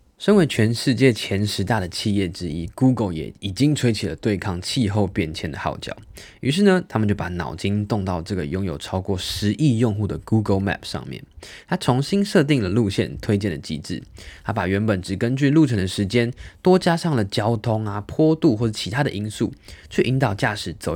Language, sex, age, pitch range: Chinese, male, 20-39, 95-125 Hz